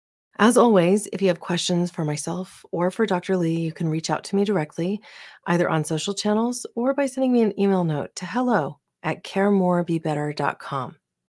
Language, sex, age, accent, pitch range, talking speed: English, female, 30-49, American, 160-215 Hz, 180 wpm